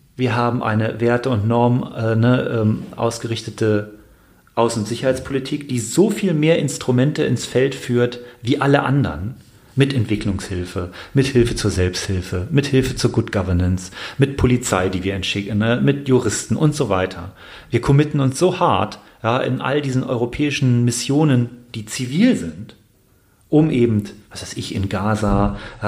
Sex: male